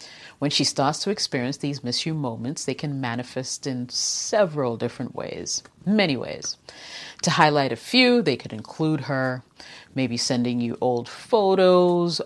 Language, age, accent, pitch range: English, 30-49, American, 130-190 Hz